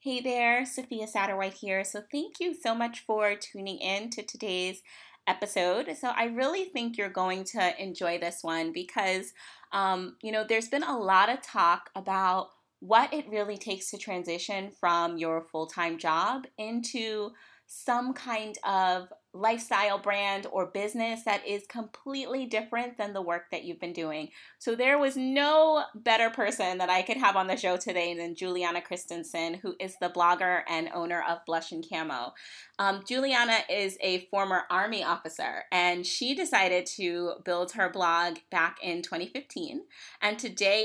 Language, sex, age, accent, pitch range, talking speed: English, female, 20-39, American, 180-230 Hz, 165 wpm